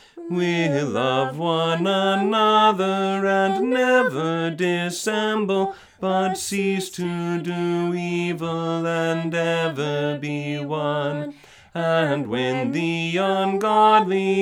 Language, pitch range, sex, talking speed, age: English, 165-215 Hz, male, 85 wpm, 40-59